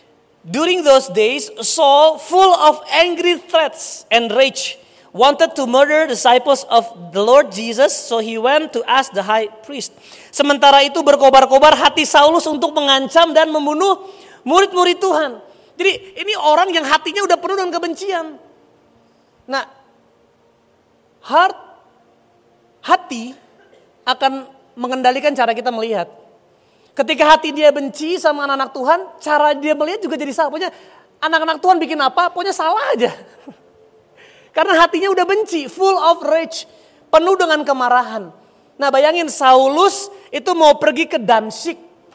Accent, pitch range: native, 250-330 Hz